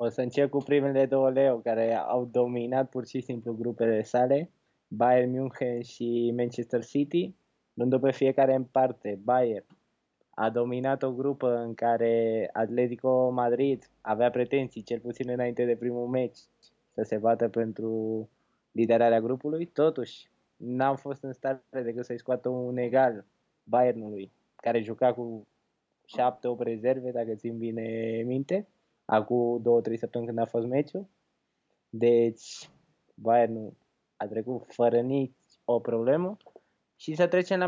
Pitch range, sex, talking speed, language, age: 115-140 Hz, male, 135 wpm, Romanian, 20-39